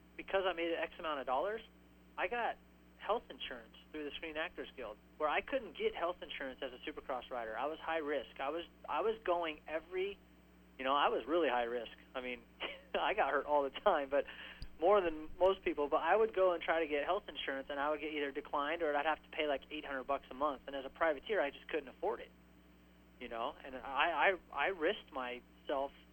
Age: 30-49